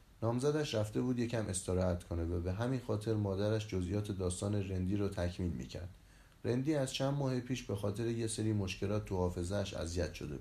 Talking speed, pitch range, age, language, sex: 175 wpm, 90-115 Hz, 30-49, Persian, male